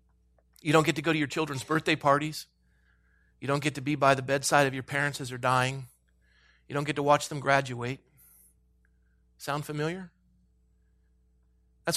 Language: English